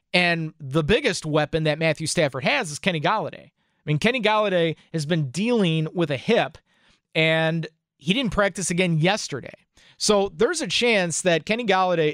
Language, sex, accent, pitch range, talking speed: English, male, American, 160-215 Hz, 170 wpm